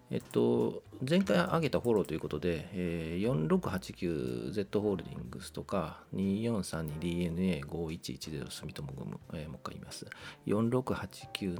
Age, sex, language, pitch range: 40-59, male, Japanese, 80-110 Hz